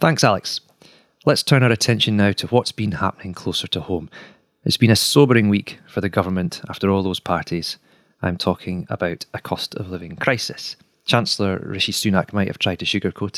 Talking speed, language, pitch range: 190 wpm, English, 95-115 Hz